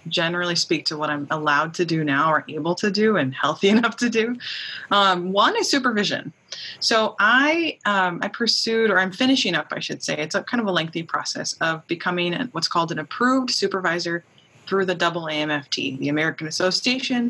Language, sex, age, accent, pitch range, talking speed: English, female, 20-39, American, 150-195 Hz, 185 wpm